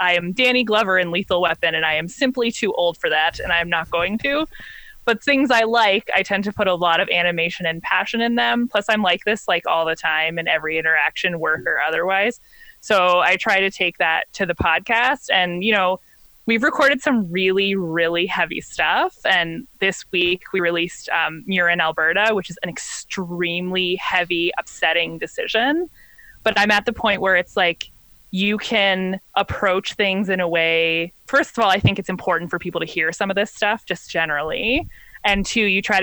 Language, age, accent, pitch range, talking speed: English, 20-39, American, 175-215 Hz, 200 wpm